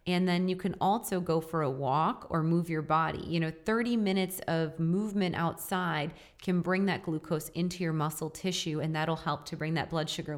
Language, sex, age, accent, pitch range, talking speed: English, female, 30-49, American, 155-185 Hz, 210 wpm